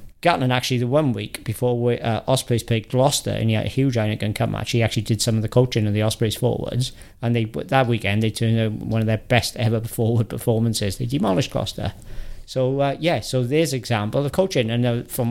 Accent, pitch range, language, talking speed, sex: British, 105-125 Hz, English, 230 wpm, male